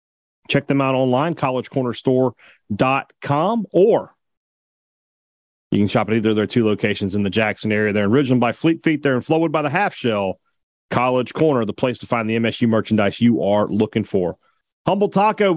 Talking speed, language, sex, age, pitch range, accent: 180 wpm, English, male, 40-59, 120-165 Hz, American